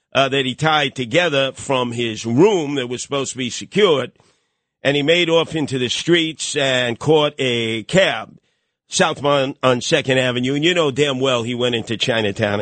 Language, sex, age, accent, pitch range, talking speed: English, male, 50-69, American, 125-160 Hz, 180 wpm